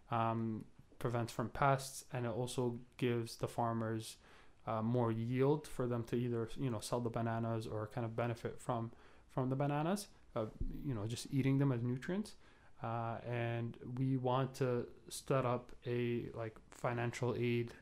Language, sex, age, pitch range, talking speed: English, male, 20-39, 115-130 Hz, 165 wpm